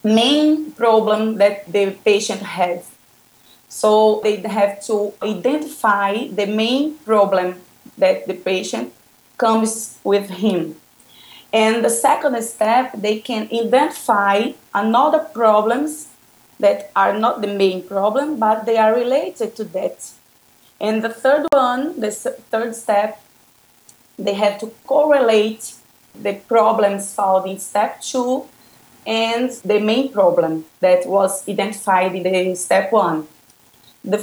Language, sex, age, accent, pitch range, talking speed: English, female, 20-39, Brazilian, 205-255 Hz, 125 wpm